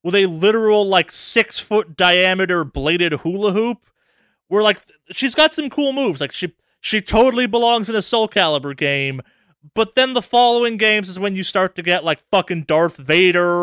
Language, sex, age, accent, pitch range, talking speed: English, male, 20-39, American, 140-185 Hz, 175 wpm